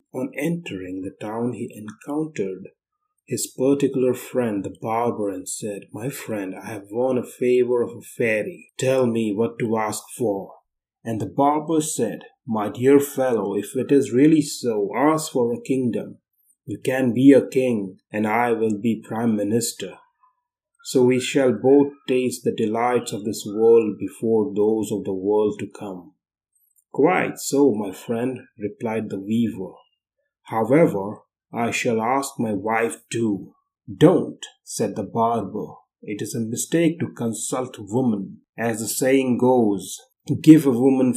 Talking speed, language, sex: 155 wpm, English, male